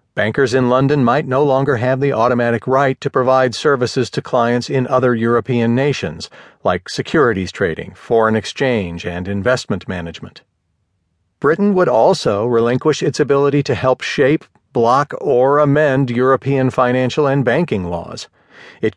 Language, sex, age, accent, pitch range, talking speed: English, male, 40-59, American, 105-135 Hz, 140 wpm